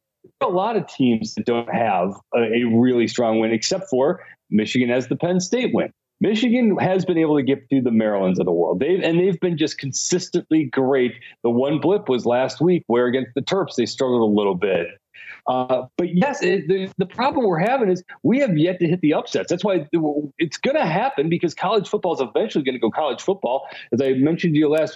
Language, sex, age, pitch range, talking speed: English, male, 40-59, 125-175 Hz, 225 wpm